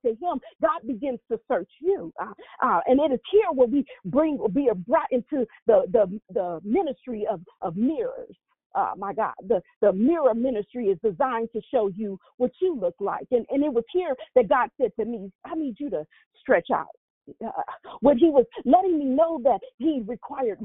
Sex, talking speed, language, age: female, 200 wpm, English, 40-59